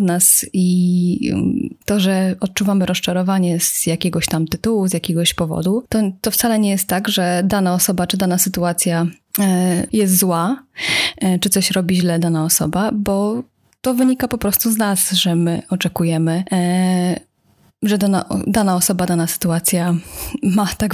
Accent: native